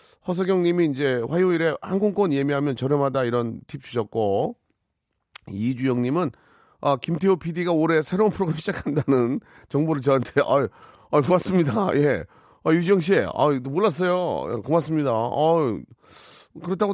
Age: 30-49